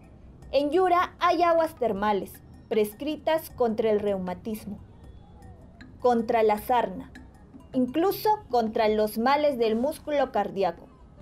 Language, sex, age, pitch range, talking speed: Spanish, female, 20-39, 215-320 Hz, 100 wpm